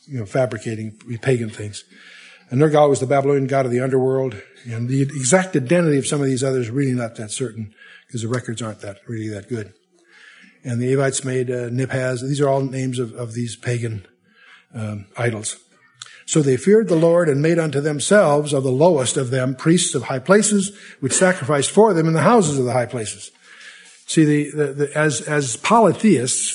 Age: 60-79